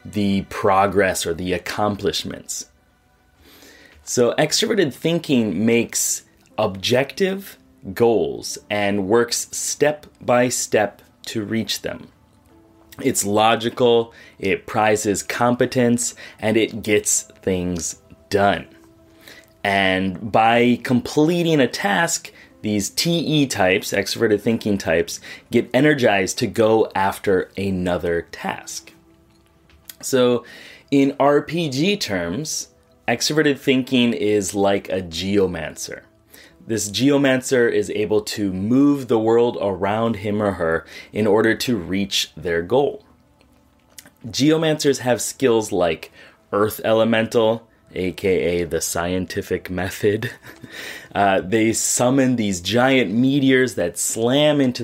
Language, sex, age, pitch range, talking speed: English, male, 30-49, 95-125 Hz, 105 wpm